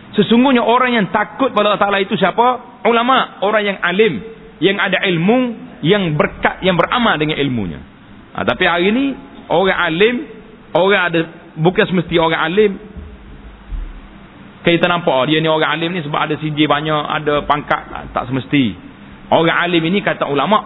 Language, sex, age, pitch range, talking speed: Malay, male, 40-59, 145-205 Hz, 160 wpm